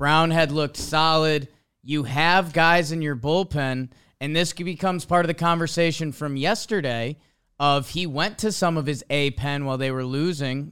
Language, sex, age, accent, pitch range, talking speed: English, male, 20-39, American, 140-180 Hz, 175 wpm